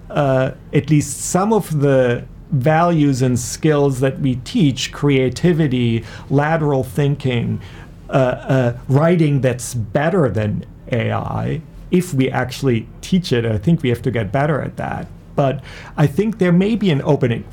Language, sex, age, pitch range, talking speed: English, male, 40-59, 125-150 Hz, 150 wpm